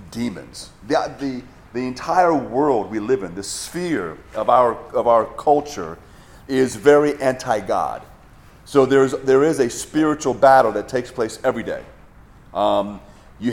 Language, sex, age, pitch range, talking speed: English, male, 40-59, 110-140 Hz, 145 wpm